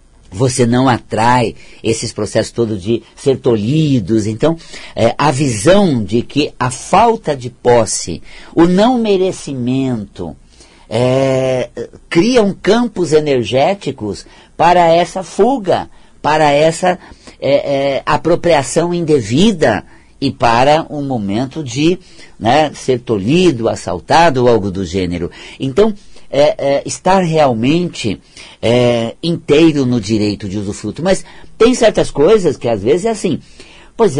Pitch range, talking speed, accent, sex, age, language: 125-170 Hz, 115 wpm, Brazilian, male, 50-69, Portuguese